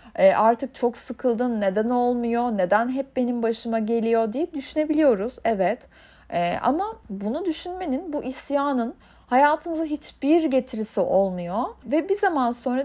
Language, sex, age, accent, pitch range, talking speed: Turkish, female, 30-49, native, 220-320 Hz, 130 wpm